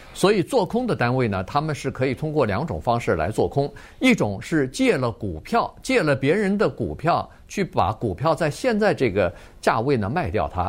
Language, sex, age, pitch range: Chinese, male, 50-69, 125-195 Hz